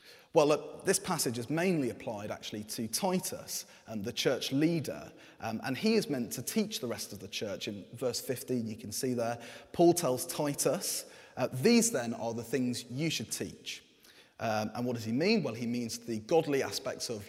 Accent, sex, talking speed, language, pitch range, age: British, male, 200 wpm, English, 115-165 Hz, 30-49